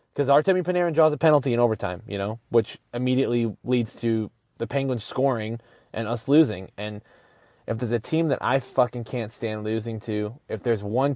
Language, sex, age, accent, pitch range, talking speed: English, male, 20-39, American, 110-135 Hz, 190 wpm